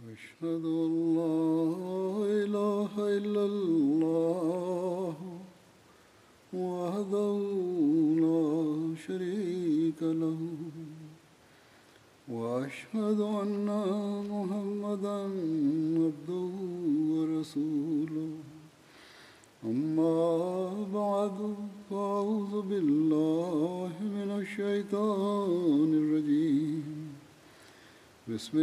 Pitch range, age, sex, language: 155-205 Hz, 60-79, male, Bulgarian